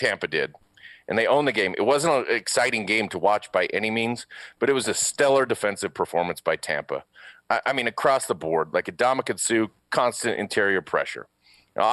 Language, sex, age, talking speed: English, male, 40-59, 195 wpm